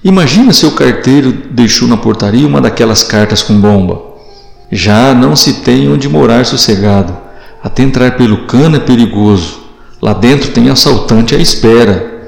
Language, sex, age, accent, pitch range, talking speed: Portuguese, male, 50-69, Brazilian, 105-135 Hz, 160 wpm